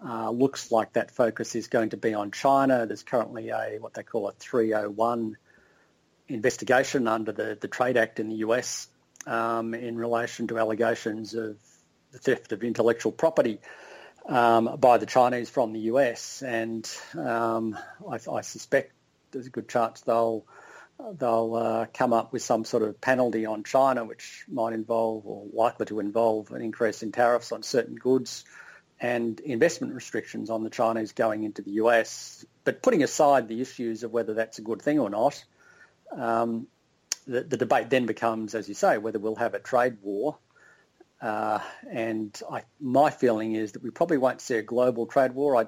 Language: English